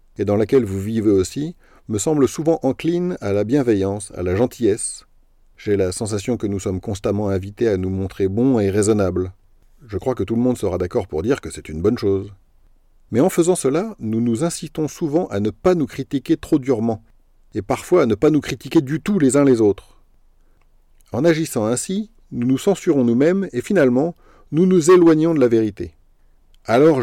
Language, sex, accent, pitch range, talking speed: French, male, French, 95-145 Hz, 200 wpm